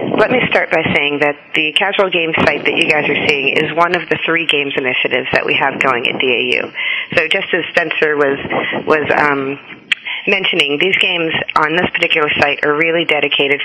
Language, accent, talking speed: English, American, 200 wpm